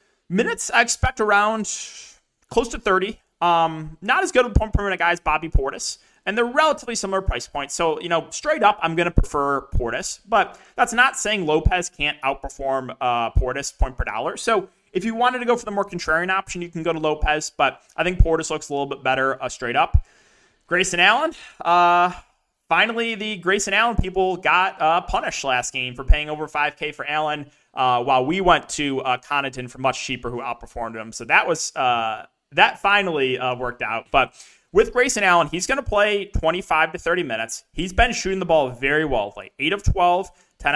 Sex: male